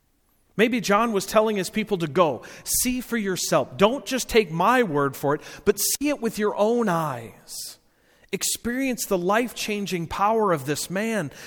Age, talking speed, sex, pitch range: 40-59, 165 wpm, male, 155-215 Hz